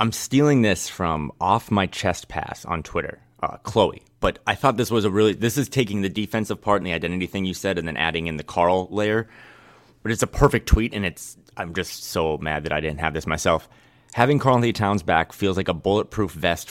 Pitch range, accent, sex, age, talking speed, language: 95-120 Hz, American, male, 30-49, 235 wpm, English